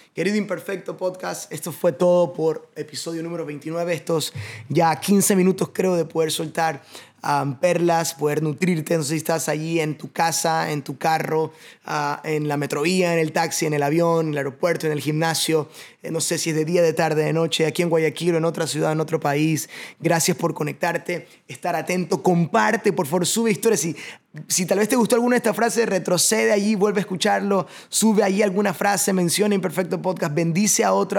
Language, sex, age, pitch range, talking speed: Spanish, male, 20-39, 160-200 Hz, 195 wpm